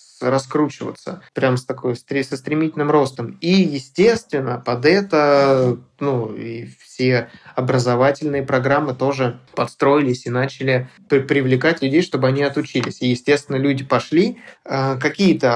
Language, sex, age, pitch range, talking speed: Russian, male, 20-39, 125-145 Hz, 115 wpm